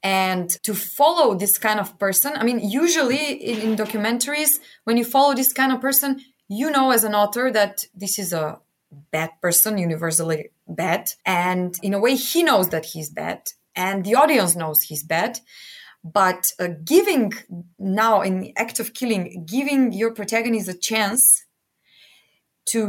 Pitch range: 190-255 Hz